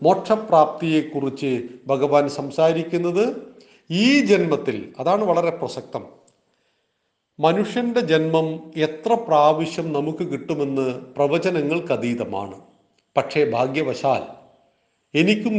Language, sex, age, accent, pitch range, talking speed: Malayalam, male, 40-59, native, 140-185 Hz, 75 wpm